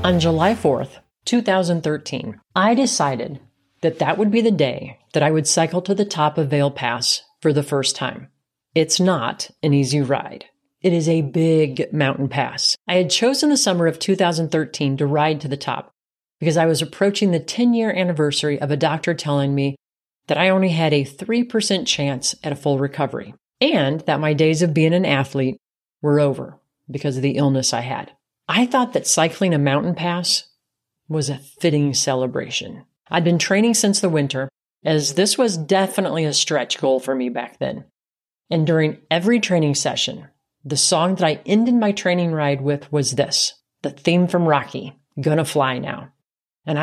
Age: 40-59